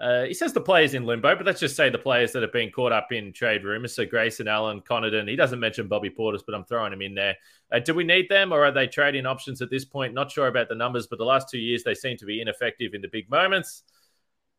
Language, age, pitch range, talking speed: English, 20-39, 115-155 Hz, 290 wpm